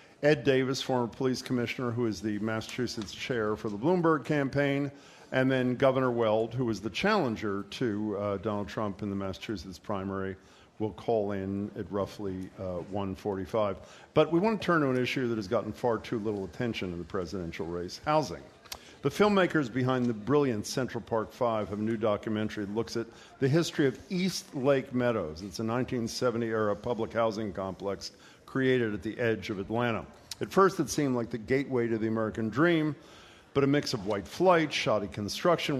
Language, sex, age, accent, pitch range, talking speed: English, male, 50-69, American, 105-130 Hz, 185 wpm